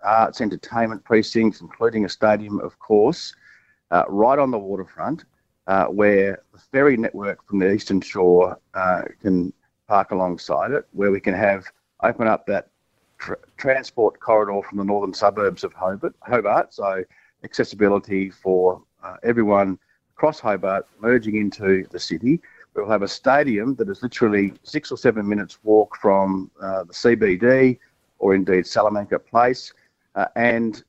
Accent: Australian